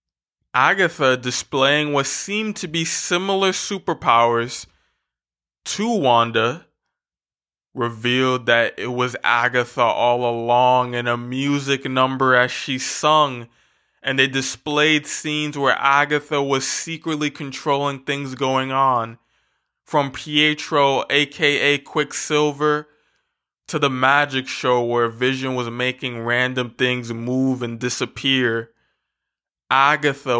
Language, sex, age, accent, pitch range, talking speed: English, male, 20-39, American, 120-145 Hz, 105 wpm